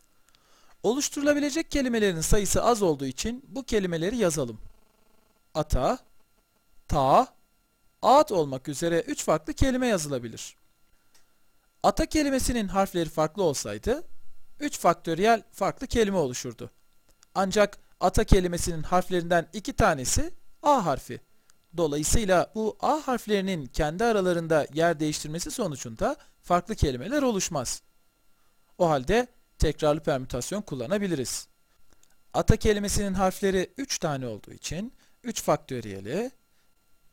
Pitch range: 130-215 Hz